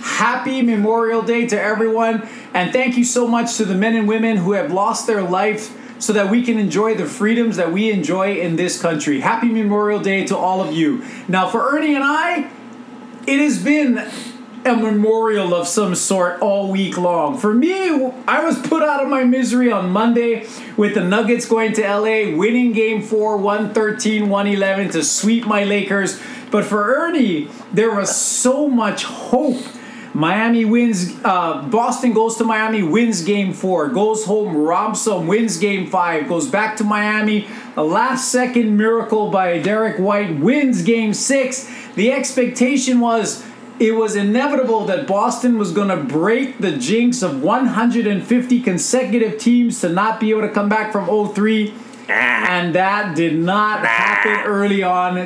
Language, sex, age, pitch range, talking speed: English, male, 30-49, 205-250 Hz, 165 wpm